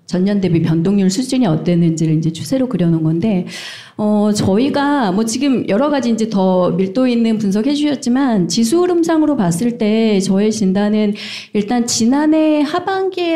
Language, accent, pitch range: Korean, native, 185-260 Hz